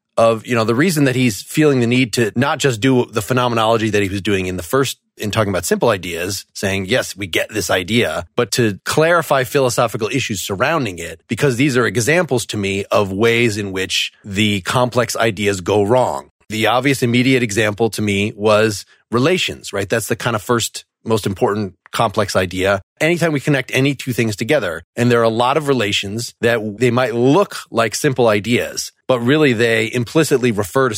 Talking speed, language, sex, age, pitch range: 195 wpm, English, male, 30-49, 105-125 Hz